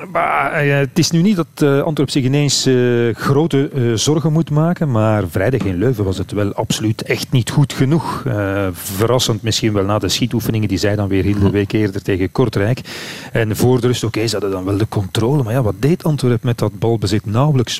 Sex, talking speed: male, 210 wpm